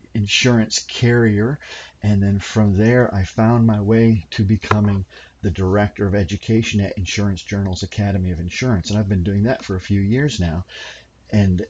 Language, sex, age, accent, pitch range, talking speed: English, male, 40-59, American, 95-115 Hz, 170 wpm